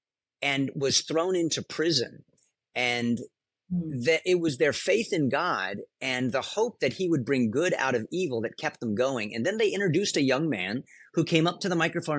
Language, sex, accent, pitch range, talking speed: English, male, American, 130-180 Hz, 200 wpm